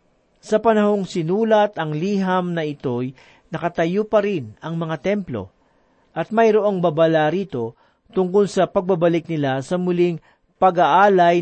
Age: 40-59